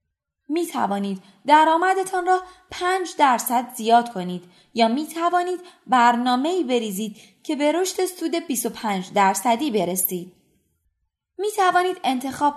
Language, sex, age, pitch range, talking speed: Persian, female, 20-39, 210-335 Hz, 115 wpm